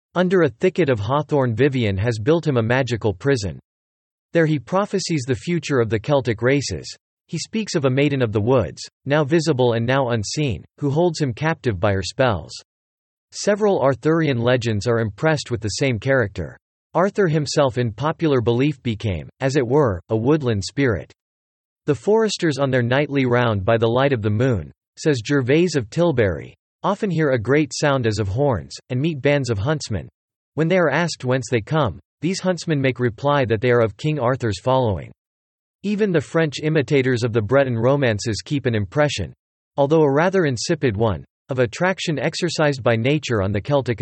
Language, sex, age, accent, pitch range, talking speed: English, male, 40-59, American, 115-155 Hz, 180 wpm